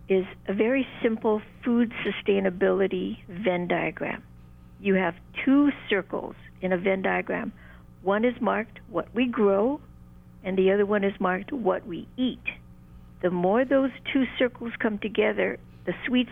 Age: 60-79